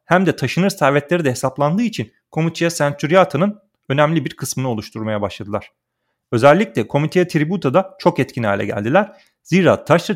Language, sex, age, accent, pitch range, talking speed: Turkish, male, 40-59, native, 125-180 Hz, 135 wpm